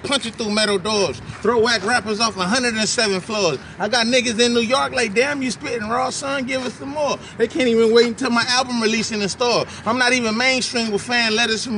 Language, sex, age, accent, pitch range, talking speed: English, male, 20-39, American, 150-240 Hz, 235 wpm